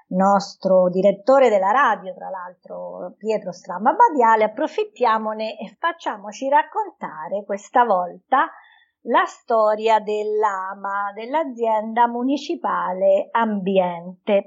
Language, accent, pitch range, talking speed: Italian, native, 200-270 Hz, 85 wpm